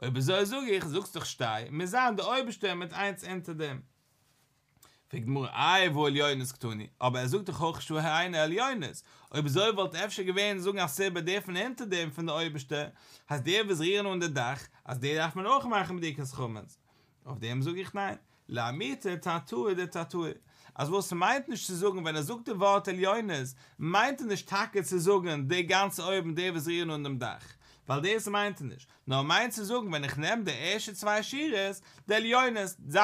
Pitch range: 140-195 Hz